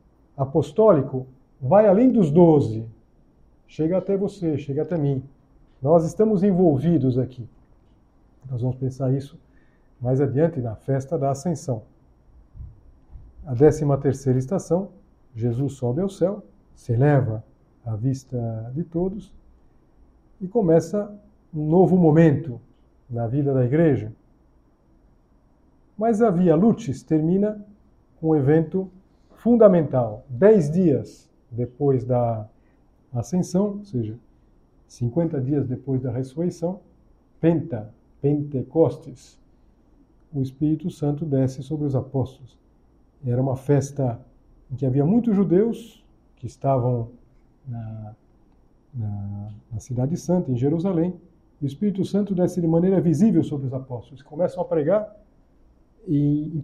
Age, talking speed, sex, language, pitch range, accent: 50-69, 115 wpm, male, Portuguese, 125-170 Hz, Brazilian